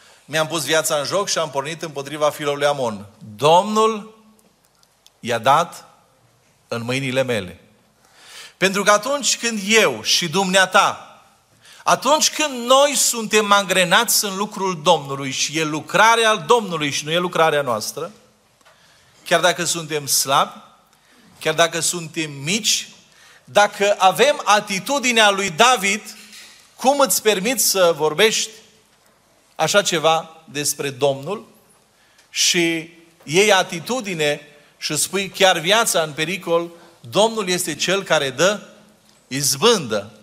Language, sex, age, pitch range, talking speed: Romanian, male, 40-59, 160-215 Hz, 115 wpm